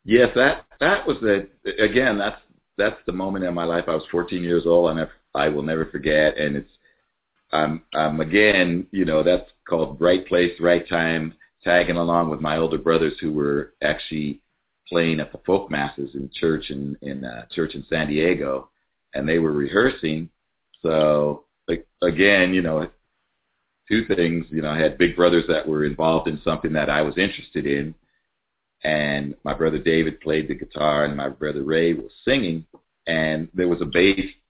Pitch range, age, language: 75-90 Hz, 50-69, English